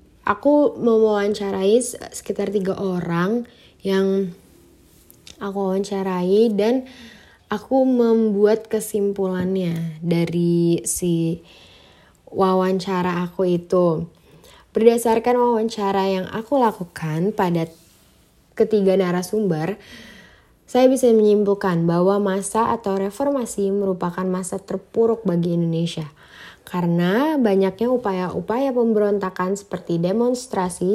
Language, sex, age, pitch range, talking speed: Indonesian, female, 20-39, 180-220 Hz, 85 wpm